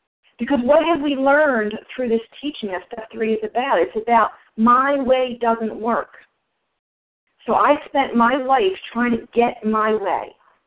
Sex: female